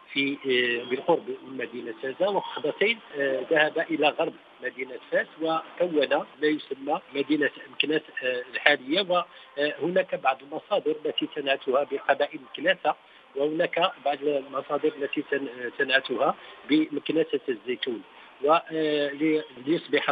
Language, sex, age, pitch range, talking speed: Arabic, male, 50-69, 135-180 Hz, 95 wpm